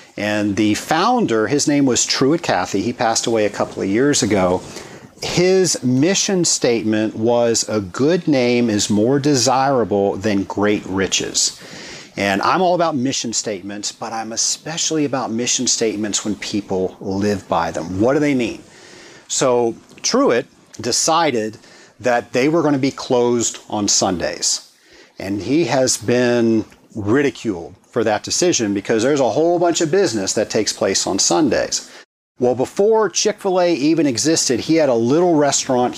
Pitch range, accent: 110-150 Hz, American